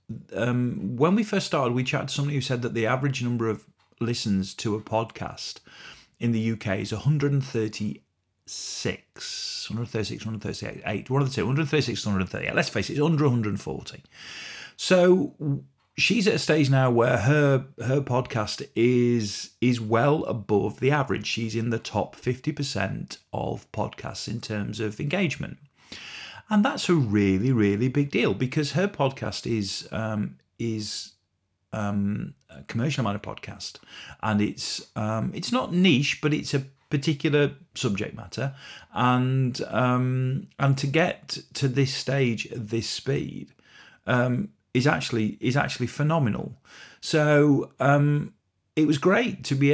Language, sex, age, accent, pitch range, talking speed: English, male, 40-59, British, 110-145 Hz, 145 wpm